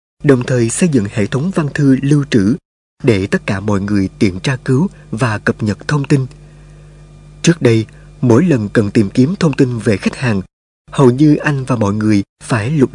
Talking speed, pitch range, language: 200 wpm, 115-150 Hz, Vietnamese